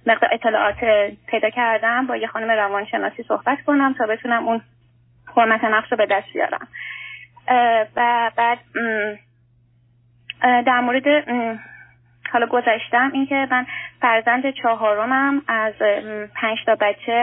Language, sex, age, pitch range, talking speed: Persian, female, 20-39, 210-245 Hz, 115 wpm